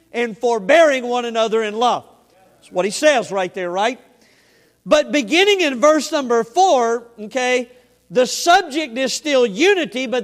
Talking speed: 150 wpm